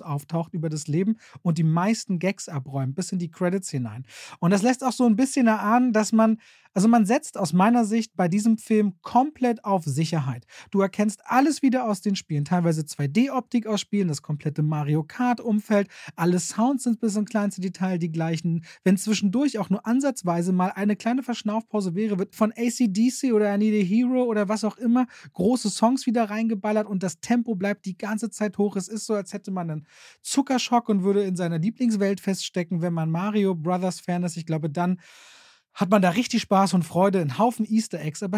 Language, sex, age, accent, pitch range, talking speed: German, male, 30-49, German, 160-220 Hz, 195 wpm